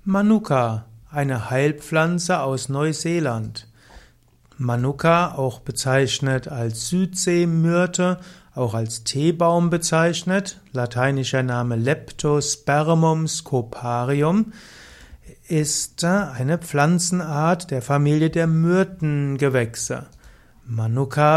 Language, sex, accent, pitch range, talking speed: German, male, German, 130-170 Hz, 75 wpm